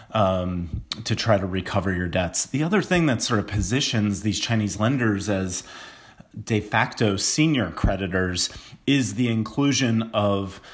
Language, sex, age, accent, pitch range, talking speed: English, male, 30-49, American, 100-125 Hz, 145 wpm